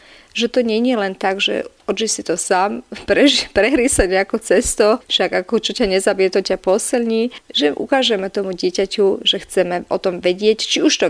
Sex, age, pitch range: female, 30-49, 180-230 Hz